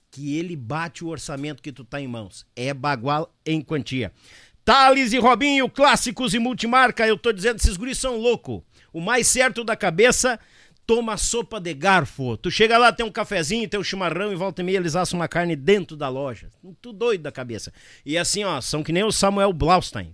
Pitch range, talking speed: 145-215 Hz, 205 wpm